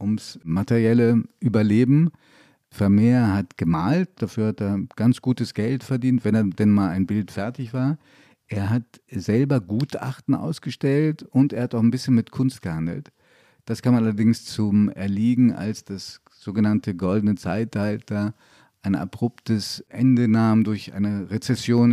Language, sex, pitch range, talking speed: German, male, 100-130 Hz, 140 wpm